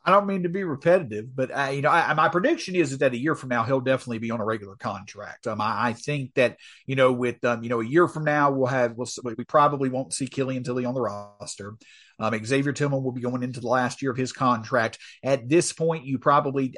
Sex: male